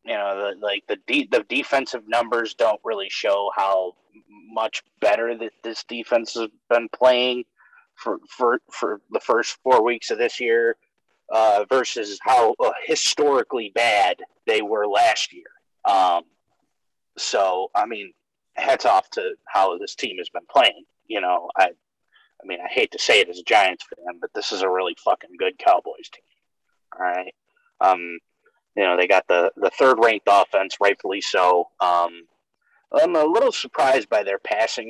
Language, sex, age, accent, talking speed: English, male, 30-49, American, 165 wpm